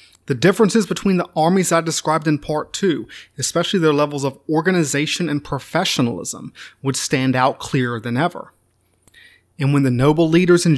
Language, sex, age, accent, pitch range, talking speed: English, male, 30-49, American, 130-165 Hz, 160 wpm